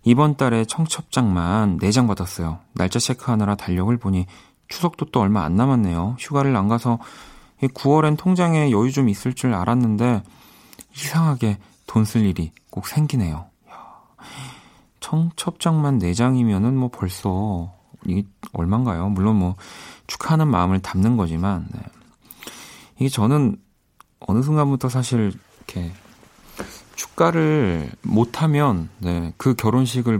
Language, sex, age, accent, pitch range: Korean, male, 40-59, native, 95-130 Hz